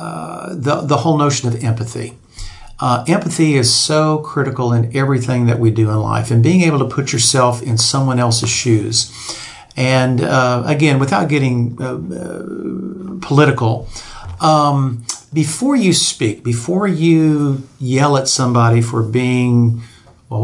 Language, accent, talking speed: English, American, 145 wpm